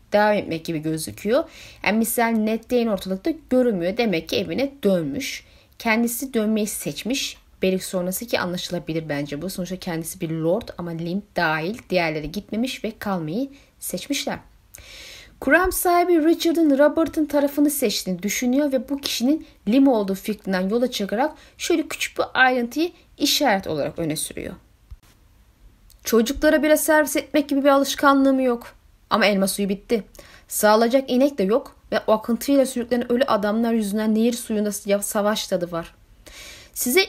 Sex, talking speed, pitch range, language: female, 140 wpm, 195-280 Hz, Turkish